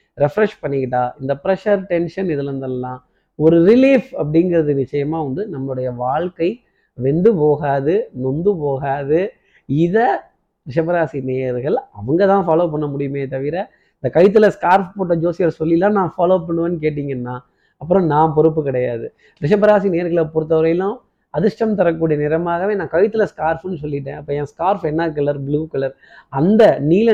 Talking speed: 120 wpm